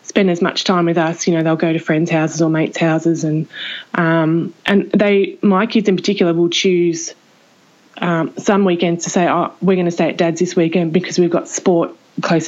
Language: English